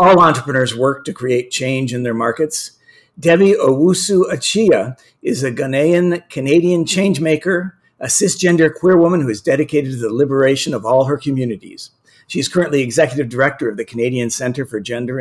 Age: 50-69